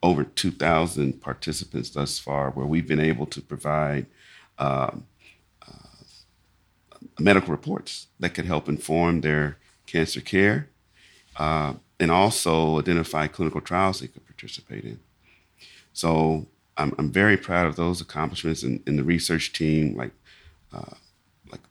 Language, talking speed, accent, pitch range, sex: English, 135 wpm, American, 75-90 Hz, male